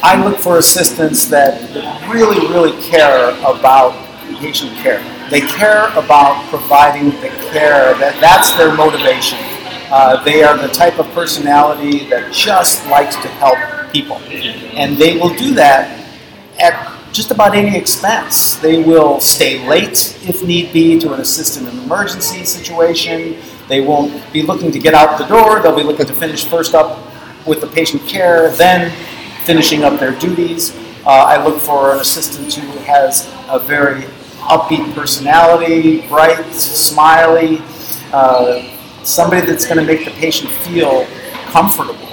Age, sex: 50-69, male